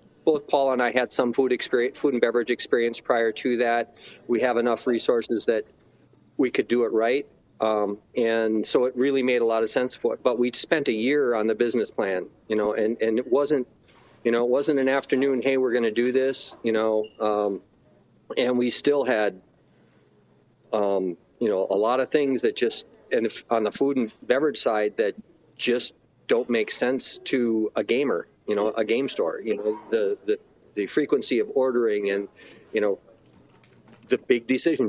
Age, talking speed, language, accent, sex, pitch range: 40-59, 195 wpm, English, American, male, 110-140 Hz